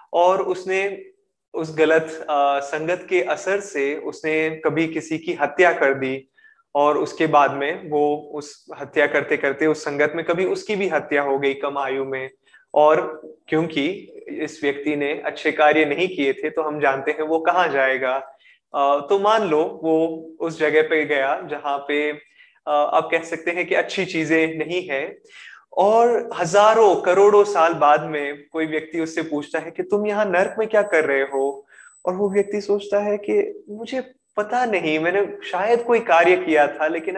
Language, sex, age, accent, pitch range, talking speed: Hindi, male, 20-39, native, 150-195 Hz, 175 wpm